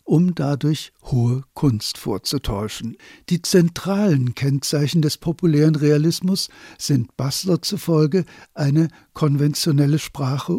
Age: 60-79